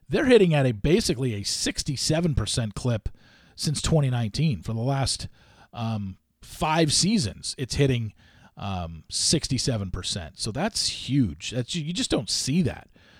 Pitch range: 110-160 Hz